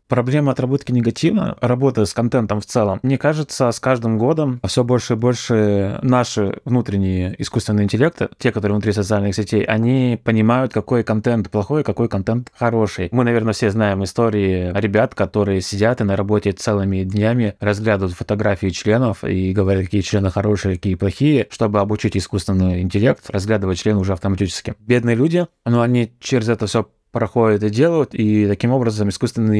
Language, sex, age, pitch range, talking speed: Russian, male, 20-39, 105-125 Hz, 160 wpm